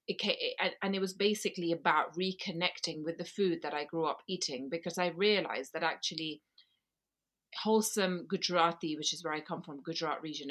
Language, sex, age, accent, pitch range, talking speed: English, female, 30-49, British, 160-205 Hz, 165 wpm